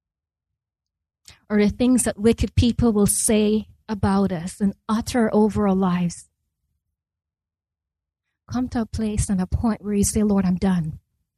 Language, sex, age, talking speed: English, female, 20-39, 150 wpm